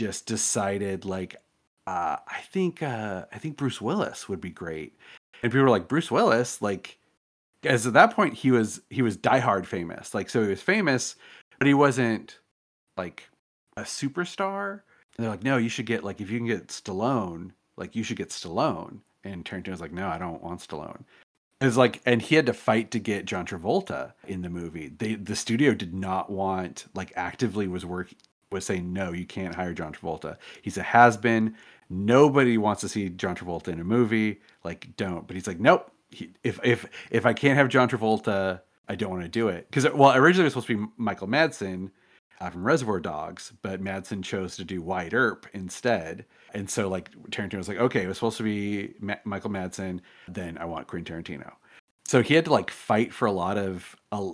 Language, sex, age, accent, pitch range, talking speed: English, male, 30-49, American, 95-120 Hz, 210 wpm